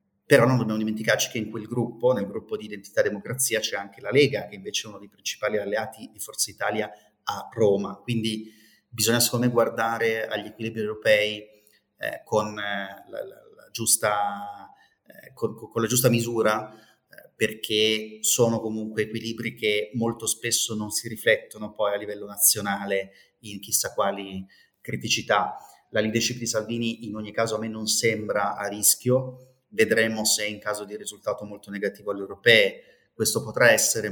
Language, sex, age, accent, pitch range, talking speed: Italian, male, 30-49, native, 105-115 Hz, 170 wpm